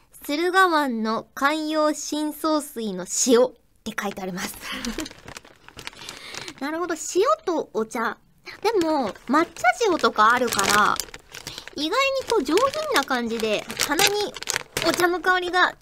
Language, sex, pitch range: Japanese, male, 240-370 Hz